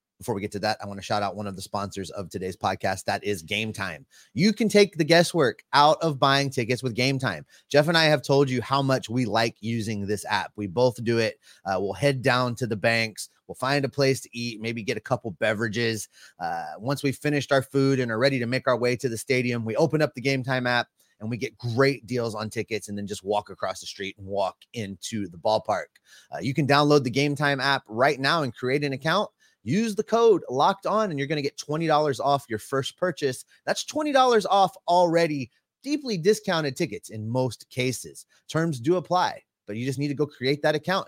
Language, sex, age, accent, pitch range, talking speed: English, male, 30-49, American, 115-165 Hz, 235 wpm